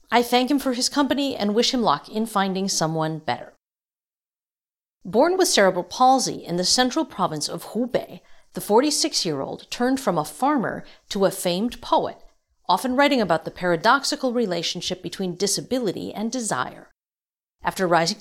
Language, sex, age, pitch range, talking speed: English, female, 50-69, 175-255 Hz, 150 wpm